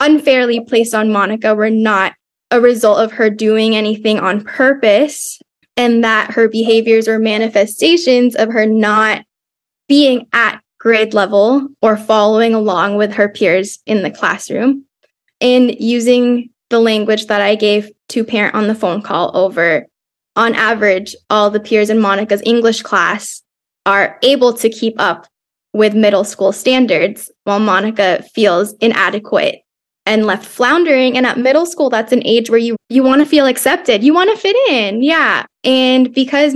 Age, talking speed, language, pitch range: 10-29, 160 wpm, English, 210-245 Hz